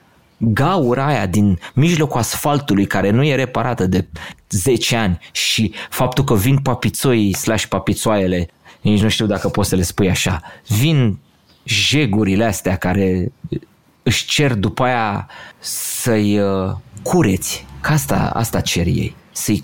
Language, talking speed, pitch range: Romanian, 135 wpm, 95-130 Hz